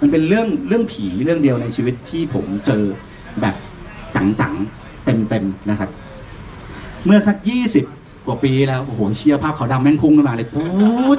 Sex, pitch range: male, 130-195 Hz